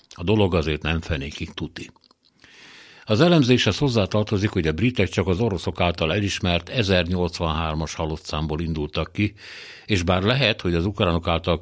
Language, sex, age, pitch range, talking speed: Hungarian, male, 60-79, 85-110 Hz, 150 wpm